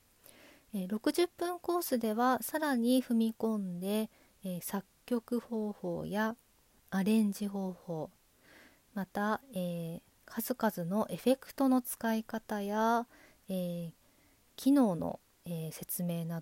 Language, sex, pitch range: Japanese, female, 180-230 Hz